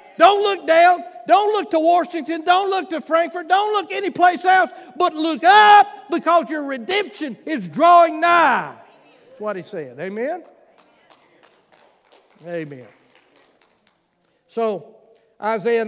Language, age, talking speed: English, 60-79, 120 wpm